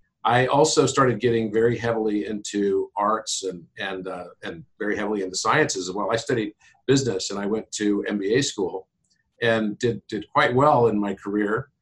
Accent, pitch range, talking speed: American, 105-125 Hz, 180 wpm